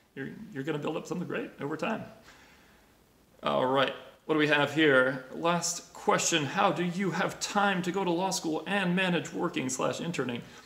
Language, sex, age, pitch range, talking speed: English, male, 30-49, 125-170 Hz, 185 wpm